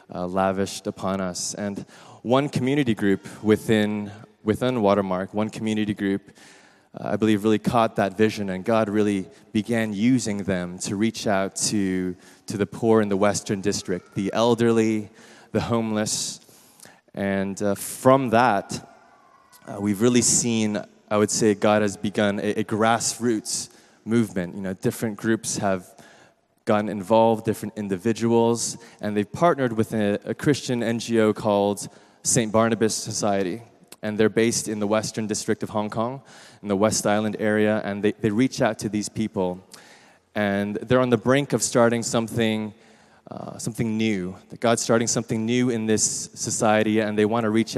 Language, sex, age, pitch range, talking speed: English, male, 20-39, 100-115 Hz, 160 wpm